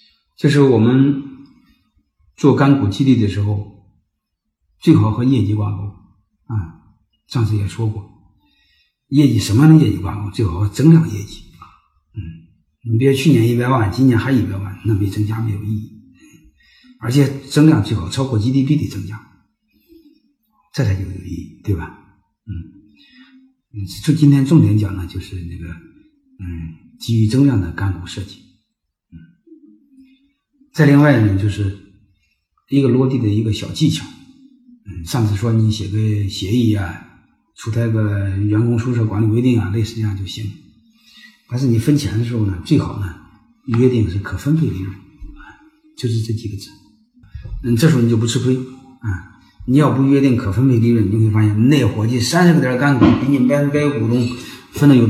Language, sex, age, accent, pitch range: Chinese, male, 50-69, native, 100-140 Hz